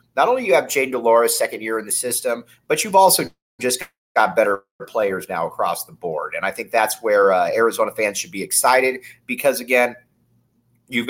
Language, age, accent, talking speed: English, 30-49, American, 195 wpm